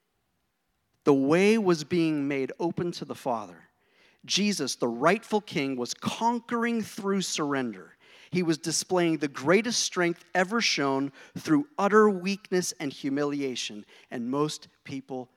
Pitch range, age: 125-175 Hz, 50-69